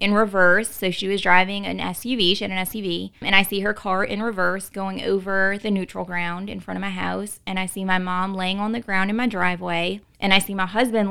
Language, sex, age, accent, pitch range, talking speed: English, female, 20-39, American, 185-220 Hz, 250 wpm